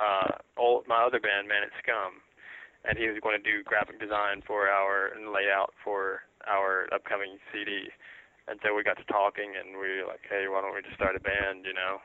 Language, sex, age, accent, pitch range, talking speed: English, male, 20-39, American, 95-110 Hz, 225 wpm